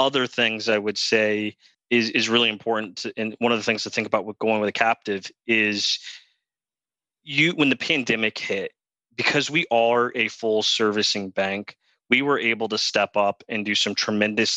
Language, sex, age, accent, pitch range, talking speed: English, male, 20-39, American, 100-120 Hz, 190 wpm